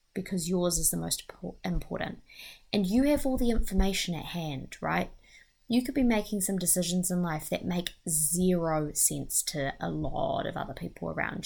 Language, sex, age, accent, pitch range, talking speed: English, female, 20-39, Australian, 155-190 Hz, 180 wpm